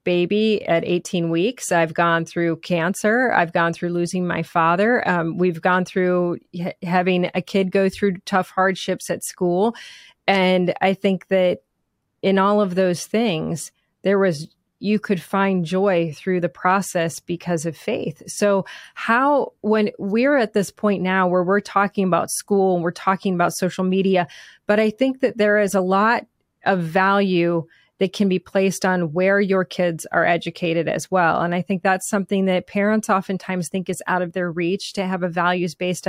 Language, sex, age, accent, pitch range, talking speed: English, female, 30-49, American, 175-200 Hz, 180 wpm